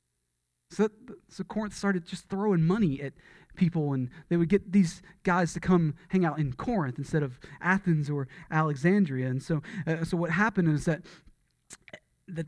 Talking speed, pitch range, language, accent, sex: 175 wpm, 135-175 Hz, English, American, male